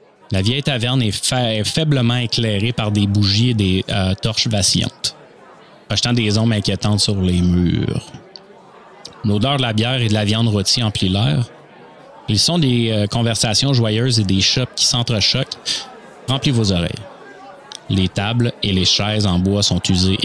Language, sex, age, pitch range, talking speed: French, male, 30-49, 100-125 Hz, 170 wpm